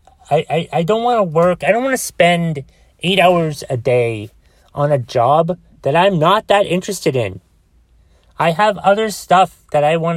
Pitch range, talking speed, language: 125-185 Hz, 190 wpm, English